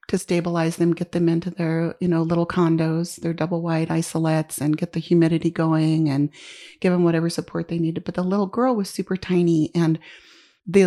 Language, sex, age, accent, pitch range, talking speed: English, female, 40-59, American, 165-190 Hz, 200 wpm